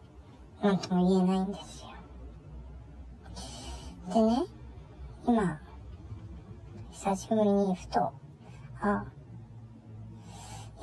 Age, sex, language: 50-69, male, Japanese